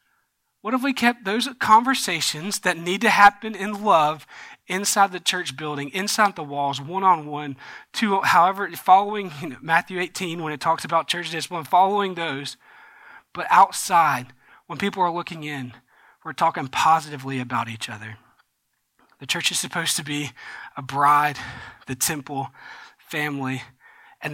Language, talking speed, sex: English, 150 wpm, male